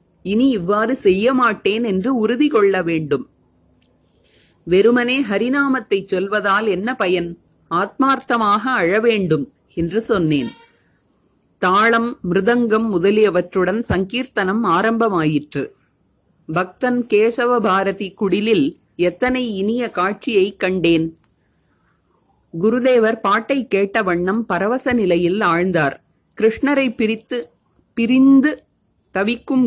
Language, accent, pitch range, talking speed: Tamil, native, 180-235 Hz, 60 wpm